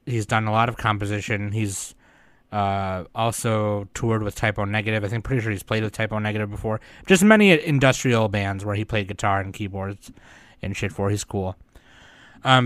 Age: 20-39